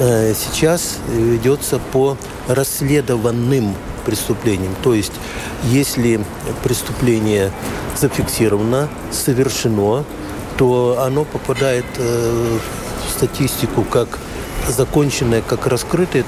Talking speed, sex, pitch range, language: 75 wpm, male, 115-145 Hz, Russian